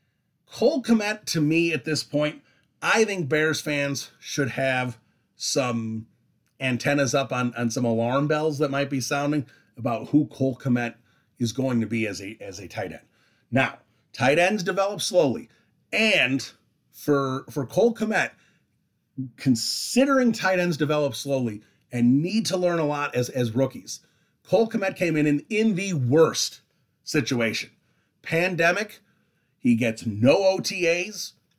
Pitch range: 125-170 Hz